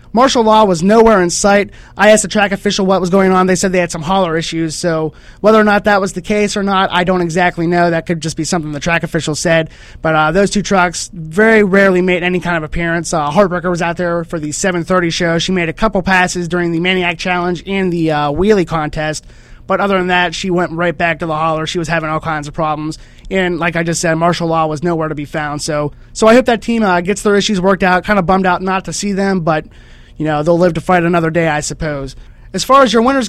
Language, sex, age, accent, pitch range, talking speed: English, male, 20-39, American, 165-200 Hz, 265 wpm